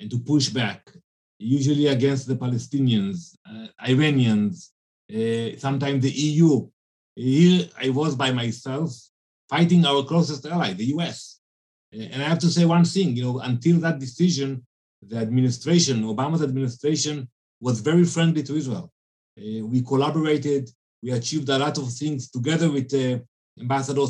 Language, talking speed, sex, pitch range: English, 145 wpm, male, 120-150 Hz